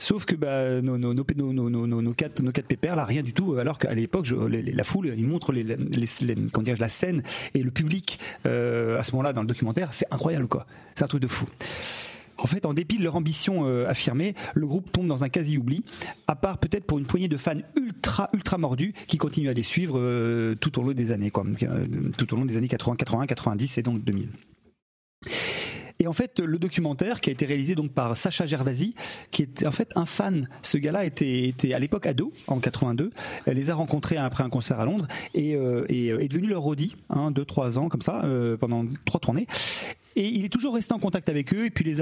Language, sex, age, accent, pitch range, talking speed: French, male, 40-59, French, 125-175 Hz, 225 wpm